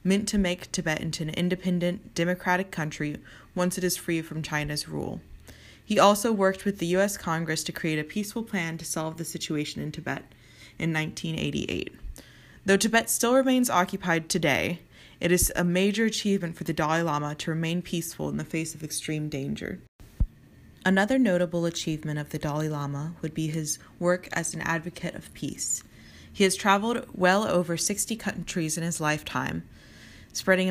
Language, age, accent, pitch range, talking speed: English, 20-39, American, 155-190 Hz, 170 wpm